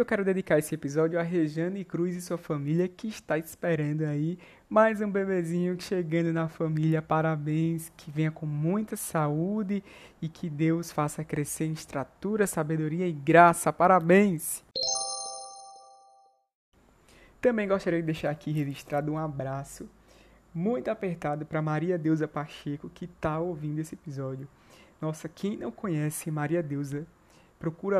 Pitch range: 150-170 Hz